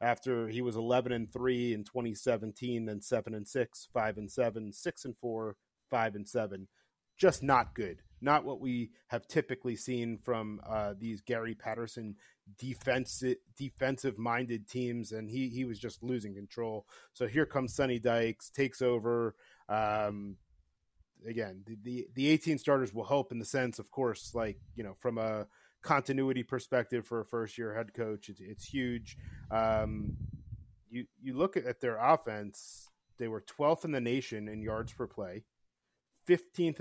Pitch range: 105-130 Hz